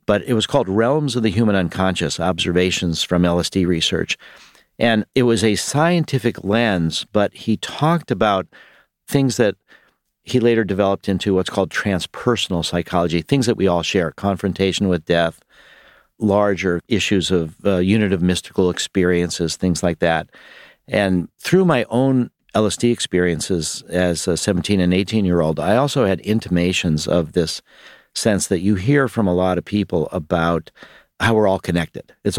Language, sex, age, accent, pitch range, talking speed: English, male, 50-69, American, 85-105 Hz, 155 wpm